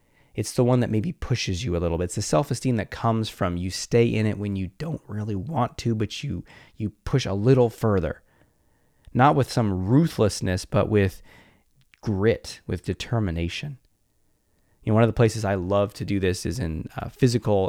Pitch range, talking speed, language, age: 95-120 Hz, 195 wpm, English, 20-39